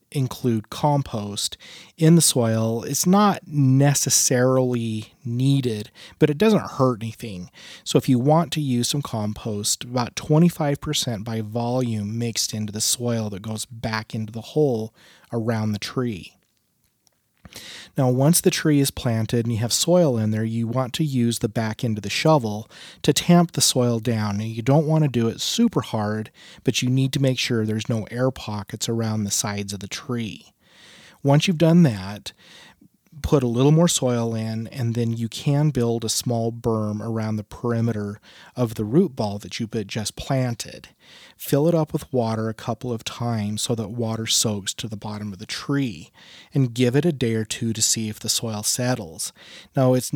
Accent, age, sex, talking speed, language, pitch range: American, 30-49, male, 185 wpm, English, 110-140 Hz